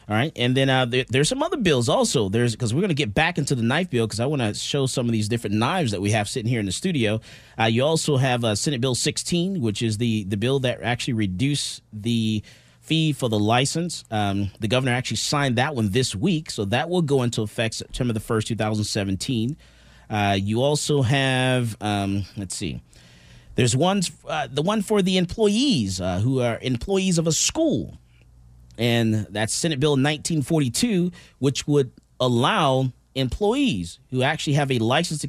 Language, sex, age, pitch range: English, male, 30-49, 110-145 Hz